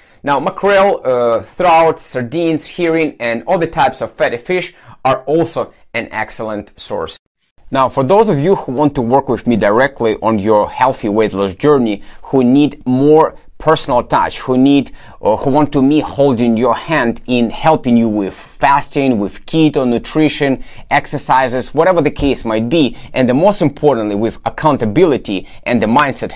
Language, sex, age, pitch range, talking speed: English, male, 30-49, 120-155 Hz, 165 wpm